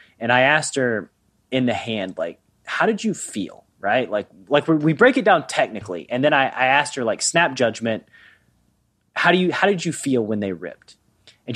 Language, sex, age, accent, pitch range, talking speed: English, male, 30-49, American, 115-160 Hz, 210 wpm